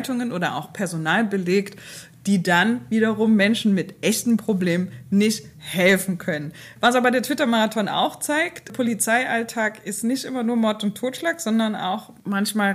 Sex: female